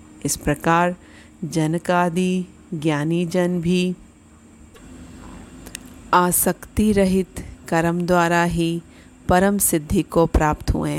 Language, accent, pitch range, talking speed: Hindi, native, 160-185 Hz, 85 wpm